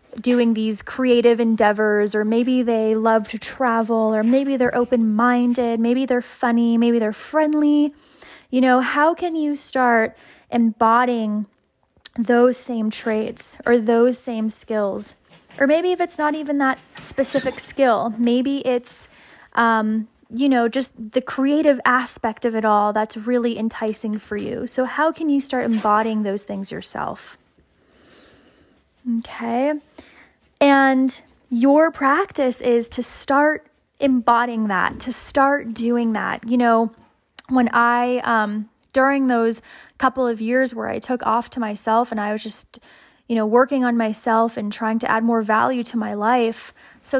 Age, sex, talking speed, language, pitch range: 10-29, female, 150 wpm, English, 225-265 Hz